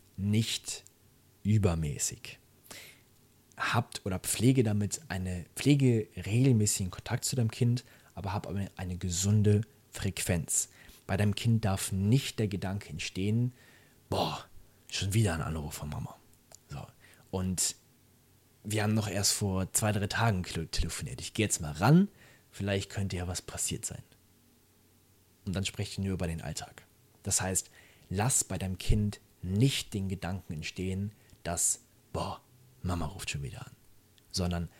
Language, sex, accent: German, male, German